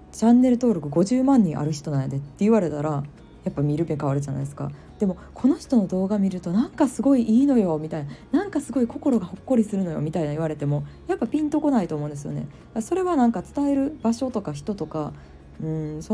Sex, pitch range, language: female, 155-225 Hz, Japanese